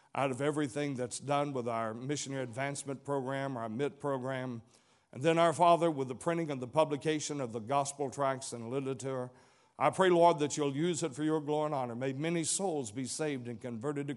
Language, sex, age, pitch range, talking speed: English, male, 60-79, 130-160 Hz, 210 wpm